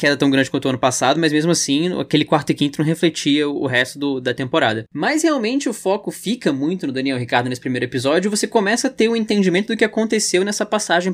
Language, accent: Portuguese, Brazilian